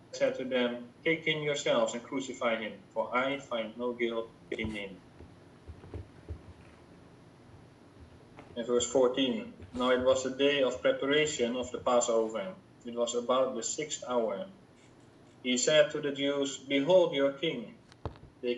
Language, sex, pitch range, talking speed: English, male, 120-145 Hz, 140 wpm